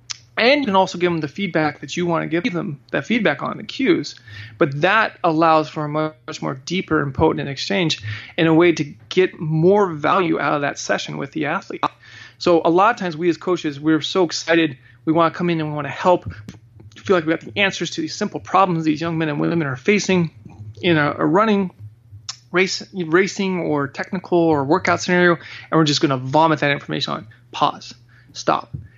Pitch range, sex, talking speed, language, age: 140-175 Hz, male, 215 wpm, English, 30-49